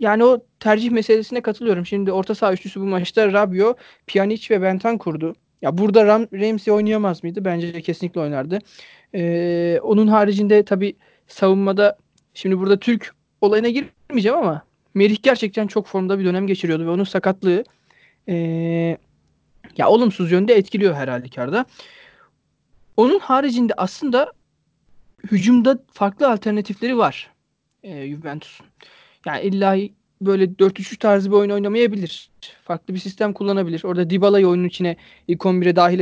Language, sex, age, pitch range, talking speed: Turkish, male, 30-49, 175-215 Hz, 135 wpm